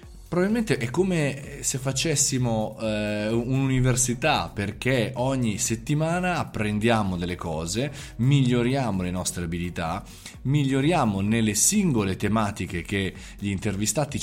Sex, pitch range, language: male, 105-140 Hz, Italian